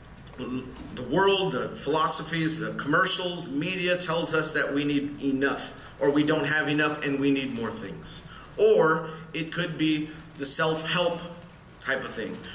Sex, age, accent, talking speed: male, 30-49, American, 160 wpm